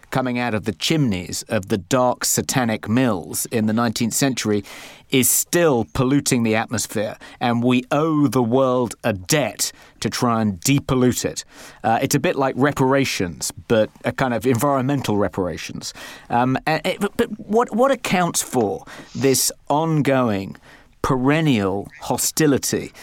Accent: British